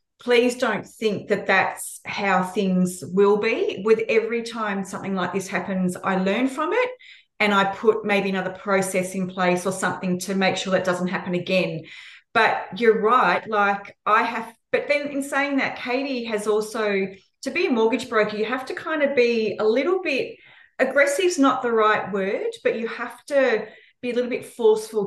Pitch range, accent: 195-245 Hz, Australian